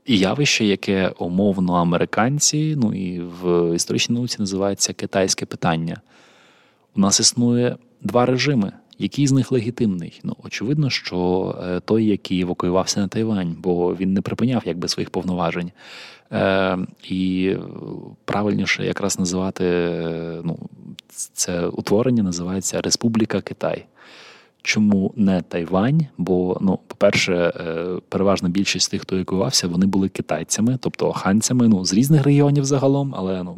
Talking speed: 125 wpm